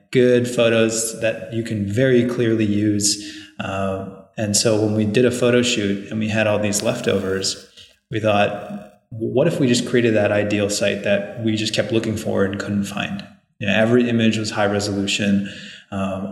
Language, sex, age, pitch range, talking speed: English, male, 20-39, 100-115 Hz, 175 wpm